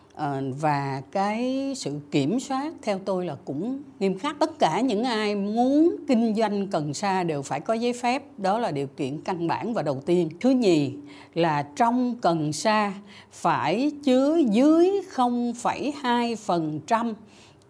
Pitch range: 165-240 Hz